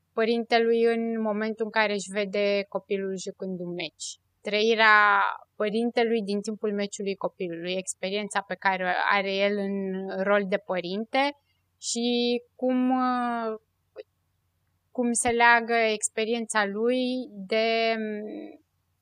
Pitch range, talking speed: 190-235 Hz, 110 wpm